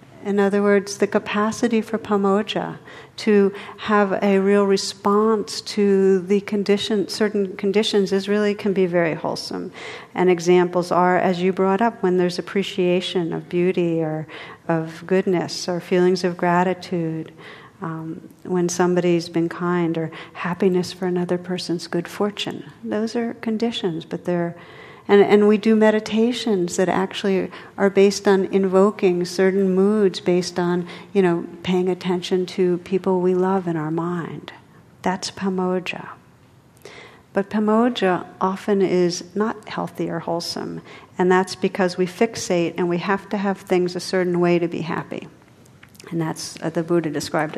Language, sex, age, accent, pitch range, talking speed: English, female, 50-69, American, 175-205 Hz, 150 wpm